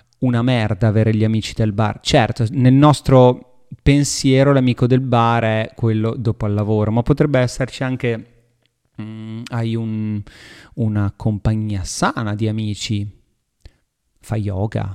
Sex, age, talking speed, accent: male, 30-49, 130 wpm, native